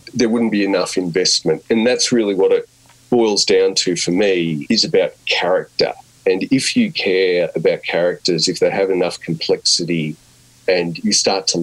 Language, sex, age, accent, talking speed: English, male, 40-59, Australian, 170 wpm